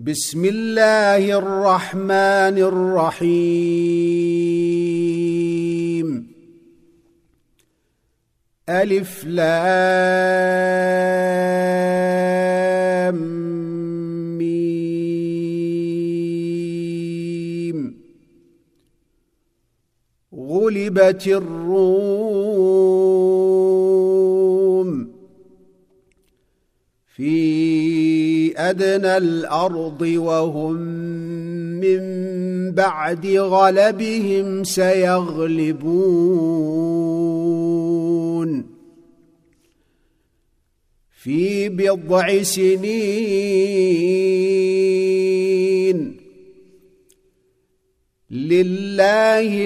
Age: 50-69